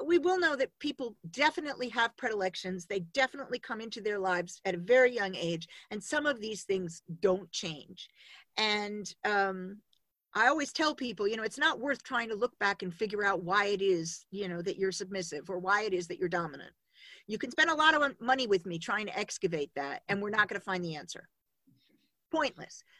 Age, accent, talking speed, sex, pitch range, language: 50-69, American, 210 wpm, female, 190-265 Hz, English